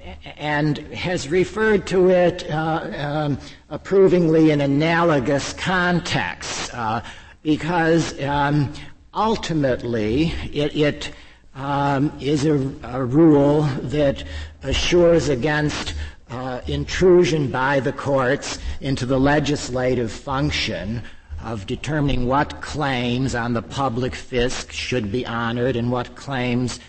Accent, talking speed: American, 105 wpm